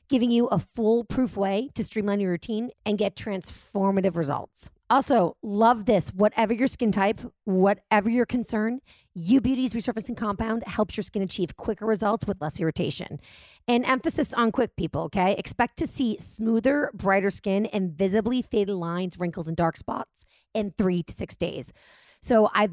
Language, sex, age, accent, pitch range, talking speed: English, female, 30-49, American, 185-235 Hz, 165 wpm